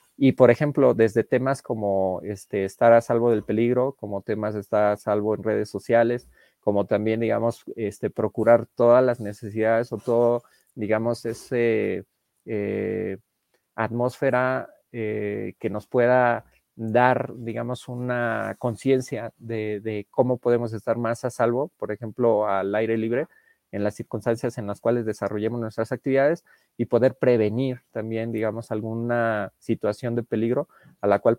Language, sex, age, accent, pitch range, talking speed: Spanish, male, 30-49, Mexican, 110-125 Hz, 140 wpm